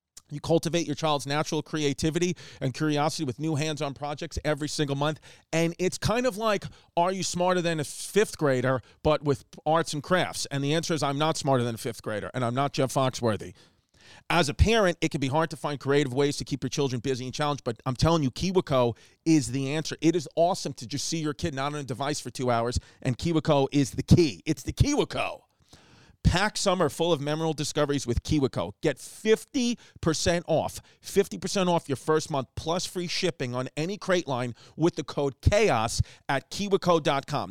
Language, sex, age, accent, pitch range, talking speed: English, male, 40-59, American, 135-170 Hz, 205 wpm